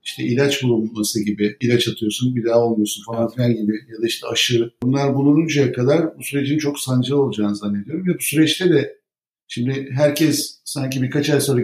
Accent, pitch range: native, 115-140 Hz